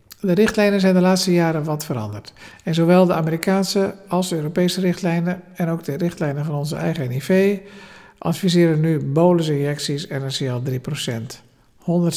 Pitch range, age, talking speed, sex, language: 140-175 Hz, 50-69, 155 wpm, male, Dutch